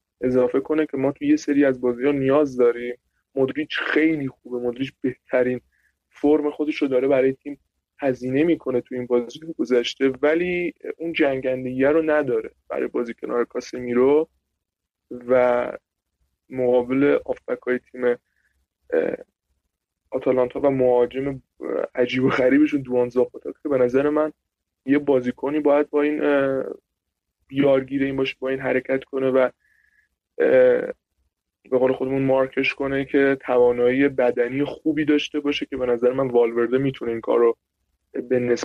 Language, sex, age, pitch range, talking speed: Persian, male, 20-39, 125-150 Hz, 135 wpm